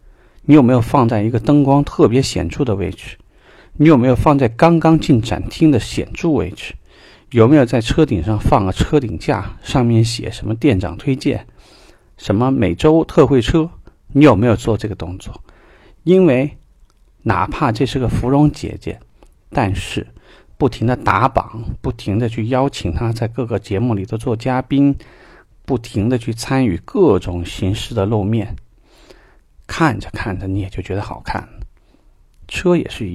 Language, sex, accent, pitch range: Chinese, male, native, 100-140 Hz